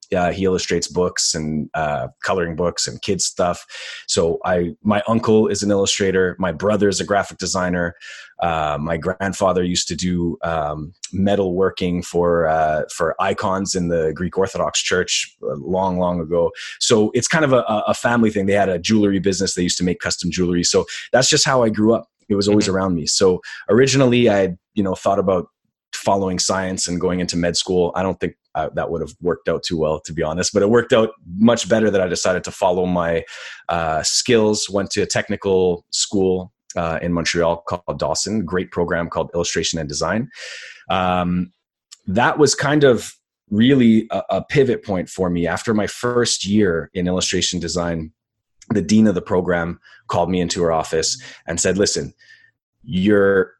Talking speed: 185 wpm